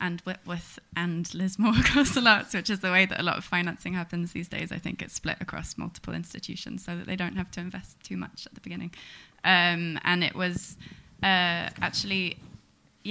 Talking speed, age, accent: 195 wpm, 20-39, British